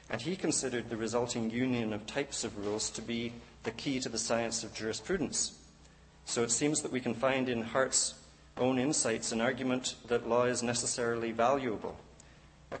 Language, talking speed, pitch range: English, 180 wpm, 110-125 Hz